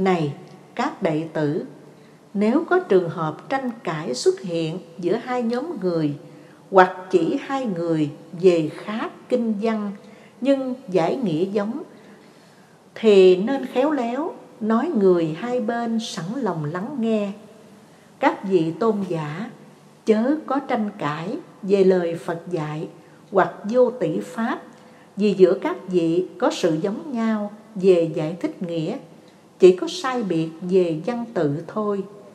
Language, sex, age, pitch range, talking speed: Vietnamese, female, 60-79, 170-235 Hz, 140 wpm